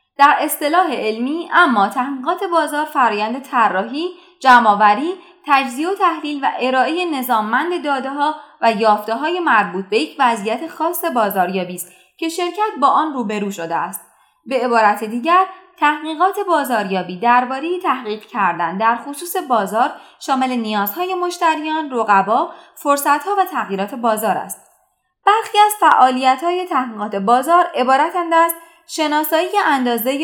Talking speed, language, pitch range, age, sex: 120 wpm, Persian, 225-335 Hz, 20-39, female